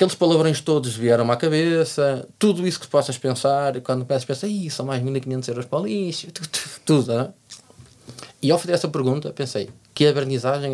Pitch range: 120-155 Hz